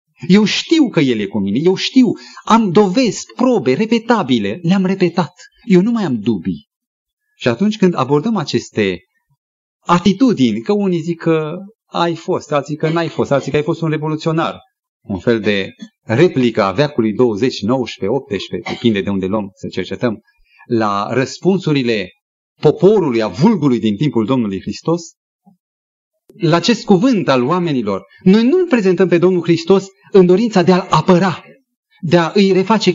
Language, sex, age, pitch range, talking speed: Romanian, male, 30-49, 115-190 Hz, 155 wpm